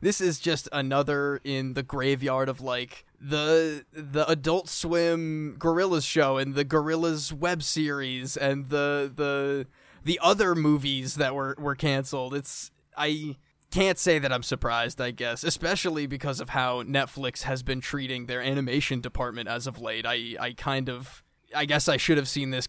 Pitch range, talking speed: 130-155 Hz, 170 wpm